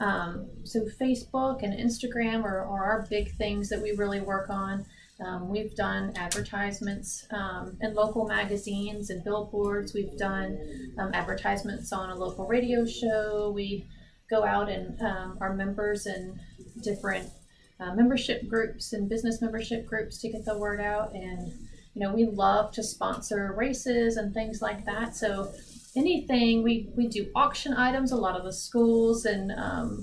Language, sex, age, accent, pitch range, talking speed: English, female, 30-49, American, 200-230 Hz, 160 wpm